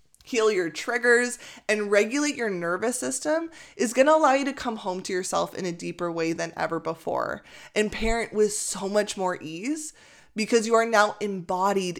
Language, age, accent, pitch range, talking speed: English, 20-39, American, 175-230 Hz, 185 wpm